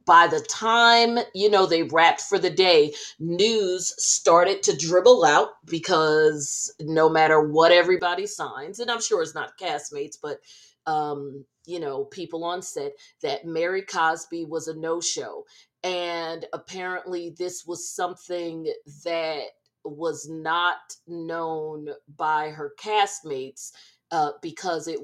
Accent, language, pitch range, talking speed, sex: American, English, 160-220 Hz, 135 wpm, female